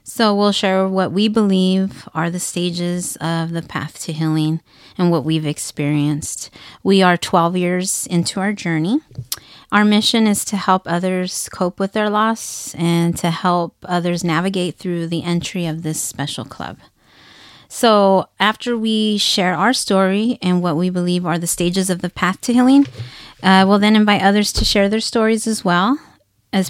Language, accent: English, American